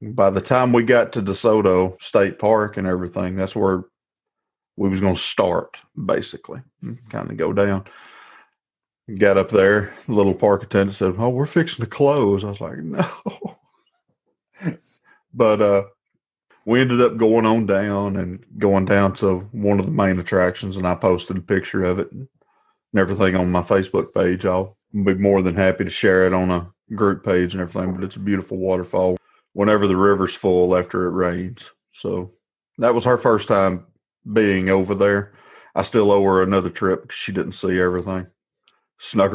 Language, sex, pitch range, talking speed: English, male, 95-105 Hz, 180 wpm